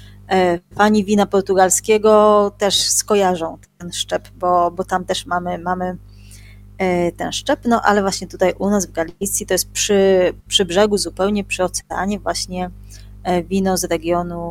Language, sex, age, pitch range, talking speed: Polish, female, 20-39, 165-200 Hz, 145 wpm